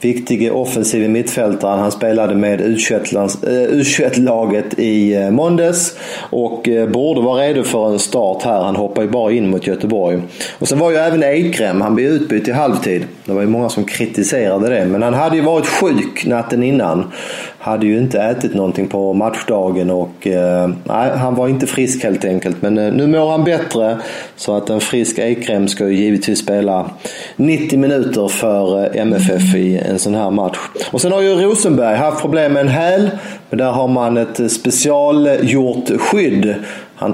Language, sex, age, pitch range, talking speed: English, male, 30-49, 105-135 Hz, 175 wpm